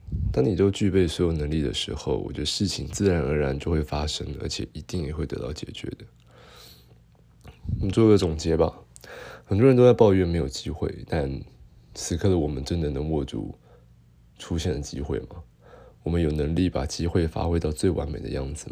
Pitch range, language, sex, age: 75-90 Hz, Chinese, male, 20-39